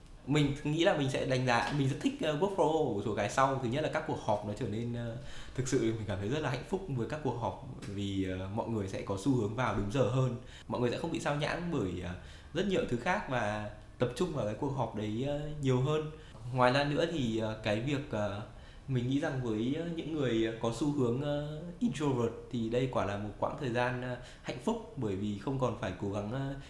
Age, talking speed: 20-39, 250 wpm